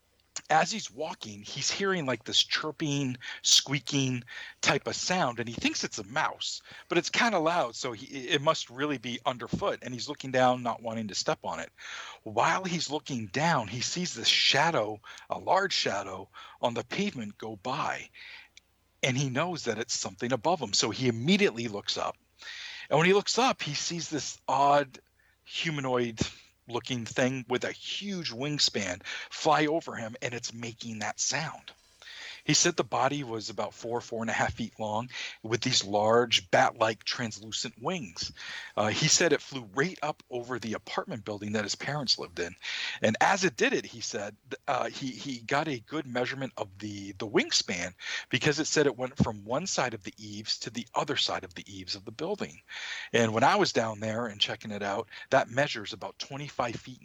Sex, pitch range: male, 110-145 Hz